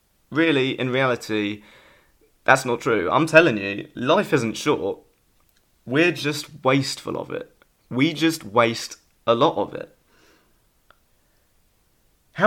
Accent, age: British, 20-39